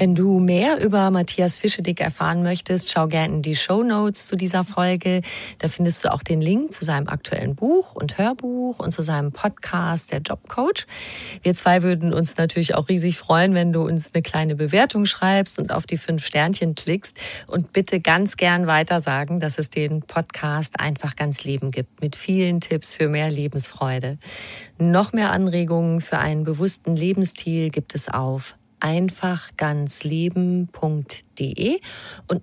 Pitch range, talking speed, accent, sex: 150-185 Hz, 160 wpm, German, female